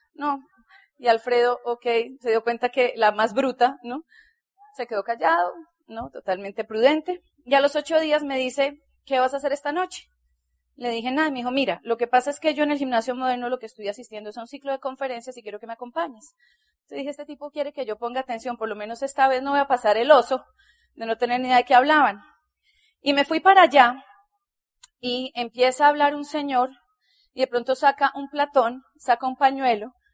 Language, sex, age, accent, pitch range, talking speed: Spanish, female, 30-49, Colombian, 230-285 Hz, 220 wpm